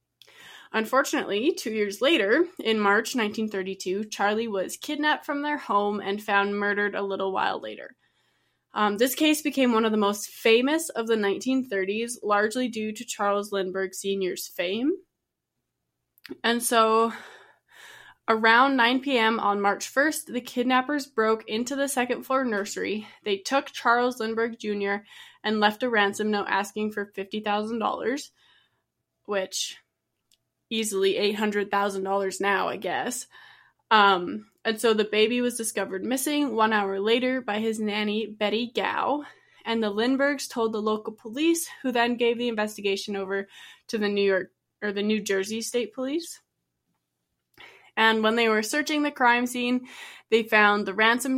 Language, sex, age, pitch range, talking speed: English, female, 20-39, 205-255 Hz, 145 wpm